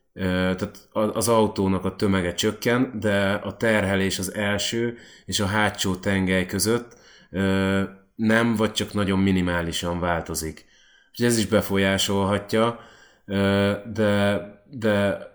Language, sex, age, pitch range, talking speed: Hungarian, male, 30-49, 90-105 Hz, 105 wpm